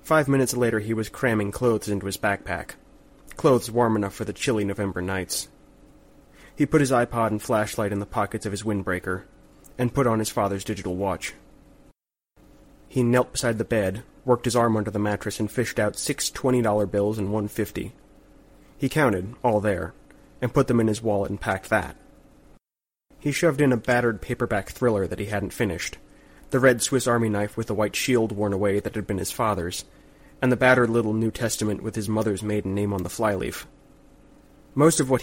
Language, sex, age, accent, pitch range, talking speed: English, male, 30-49, American, 100-120 Hz, 195 wpm